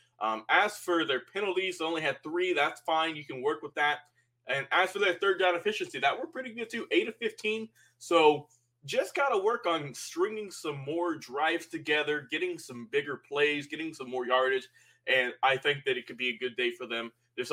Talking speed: 215 wpm